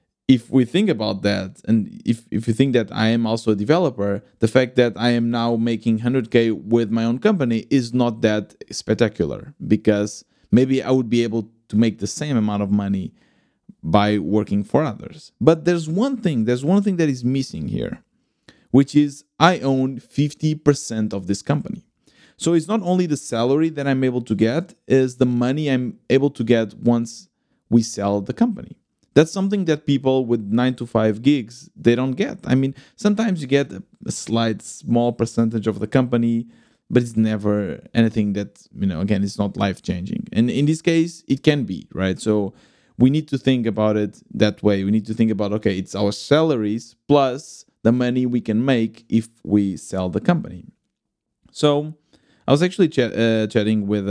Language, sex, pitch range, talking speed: English, male, 110-145 Hz, 190 wpm